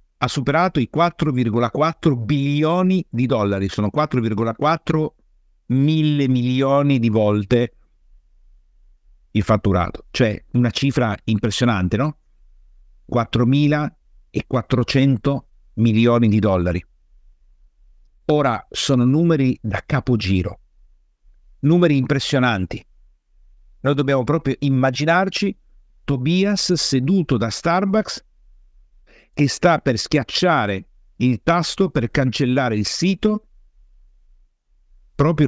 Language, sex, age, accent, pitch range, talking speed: Italian, male, 50-69, native, 95-140 Hz, 85 wpm